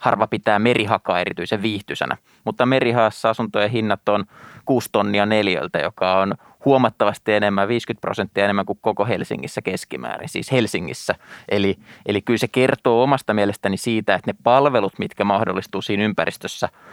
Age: 20-39